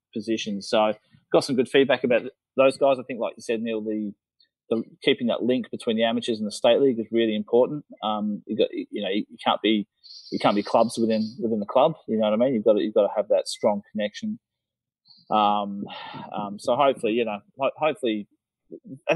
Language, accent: English, Australian